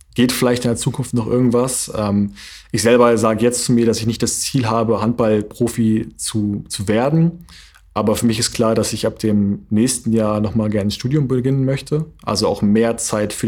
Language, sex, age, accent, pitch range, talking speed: German, male, 20-39, German, 100-120 Hz, 205 wpm